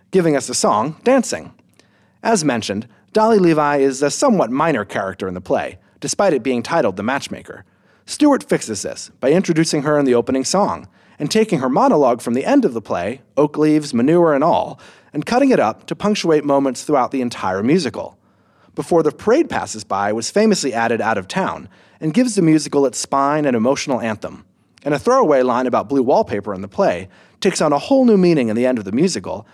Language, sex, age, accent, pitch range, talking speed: English, male, 30-49, American, 130-195 Hz, 205 wpm